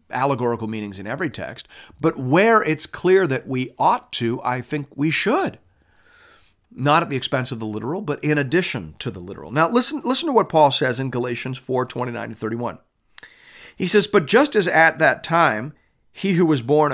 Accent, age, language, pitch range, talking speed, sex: American, 40-59, English, 120-170 Hz, 190 wpm, male